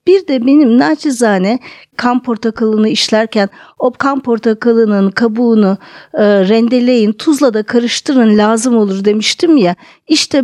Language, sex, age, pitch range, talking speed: Turkish, female, 50-69, 215-260 Hz, 115 wpm